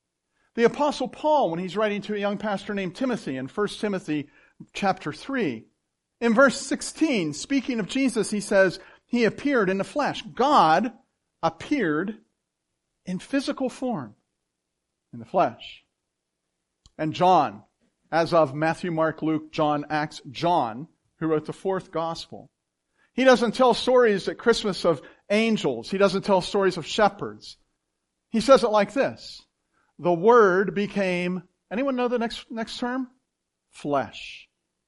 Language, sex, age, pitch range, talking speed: English, male, 50-69, 160-245 Hz, 140 wpm